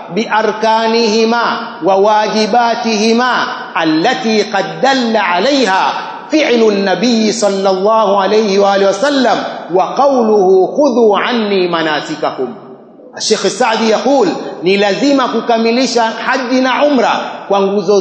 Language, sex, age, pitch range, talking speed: Swahili, male, 30-49, 210-260 Hz, 110 wpm